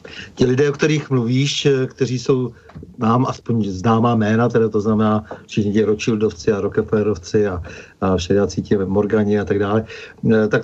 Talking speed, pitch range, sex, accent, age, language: 150 wpm, 105-115 Hz, male, native, 50-69, Czech